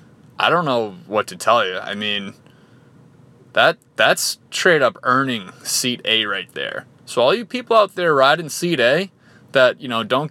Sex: male